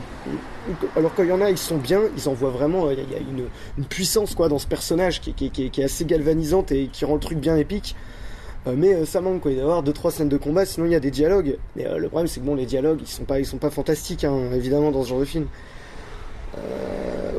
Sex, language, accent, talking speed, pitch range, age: male, French, French, 275 wpm, 135-165 Hz, 20-39